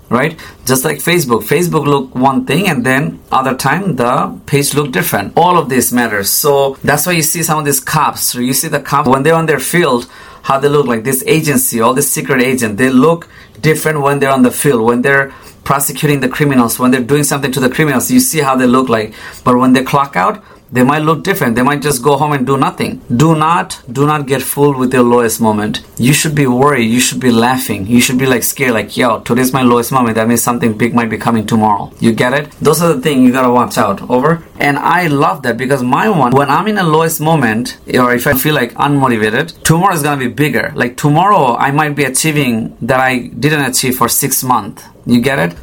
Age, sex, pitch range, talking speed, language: 30-49, male, 125-150 Hz, 240 wpm, English